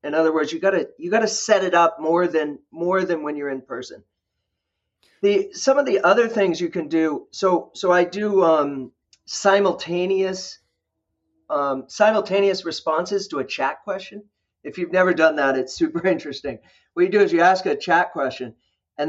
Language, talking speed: English, 180 wpm